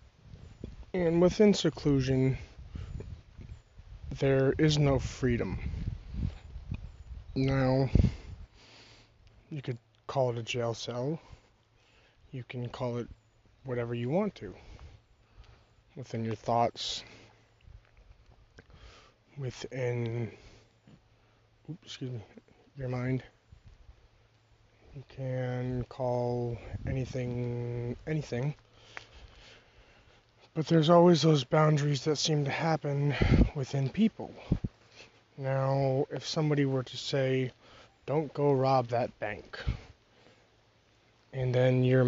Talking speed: 90 wpm